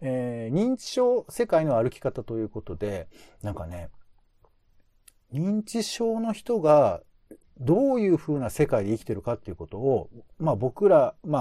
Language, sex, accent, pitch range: Japanese, male, native, 95-155 Hz